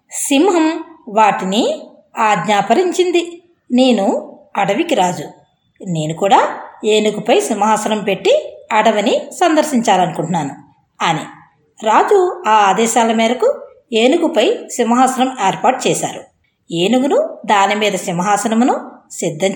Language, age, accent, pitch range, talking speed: Telugu, 20-39, native, 205-295 Hz, 80 wpm